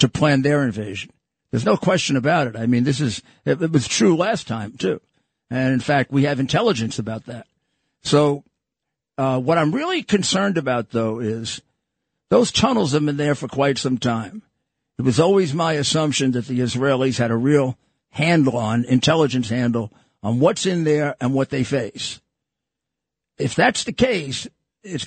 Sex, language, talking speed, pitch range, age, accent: male, English, 175 wpm, 125-155 Hz, 50-69, American